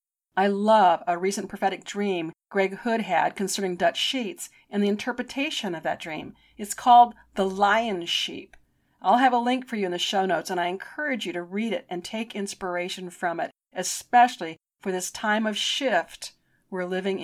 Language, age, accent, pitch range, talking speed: English, 50-69, American, 185-240 Hz, 185 wpm